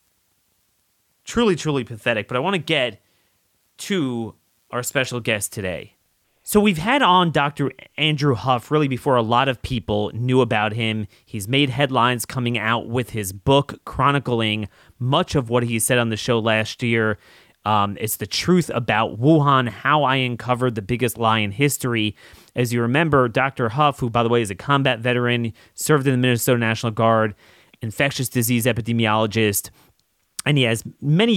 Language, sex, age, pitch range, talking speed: English, male, 30-49, 110-140 Hz, 170 wpm